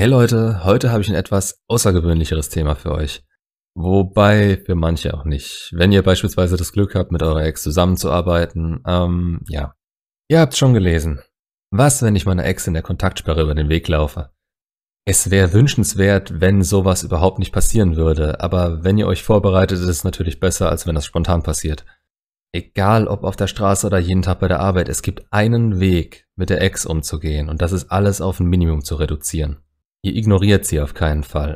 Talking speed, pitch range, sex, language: 190 wpm, 80-100 Hz, male, German